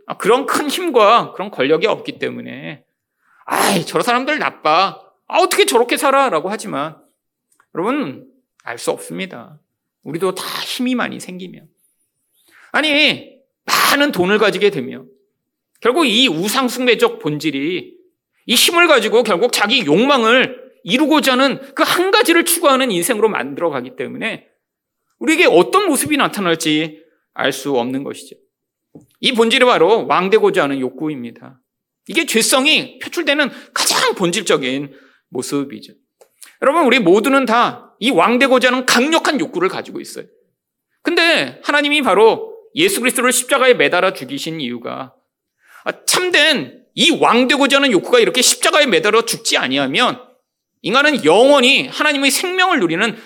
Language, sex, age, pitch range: Korean, male, 40-59, 205-315 Hz